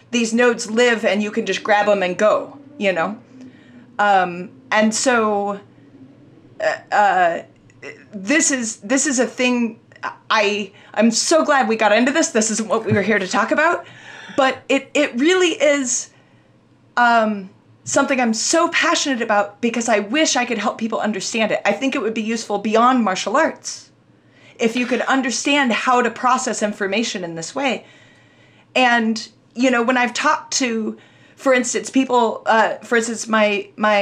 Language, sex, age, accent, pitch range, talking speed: English, female, 30-49, American, 205-260 Hz, 170 wpm